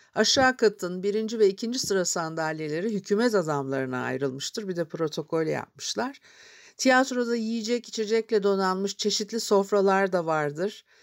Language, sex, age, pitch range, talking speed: Turkish, female, 60-79, 160-215 Hz, 120 wpm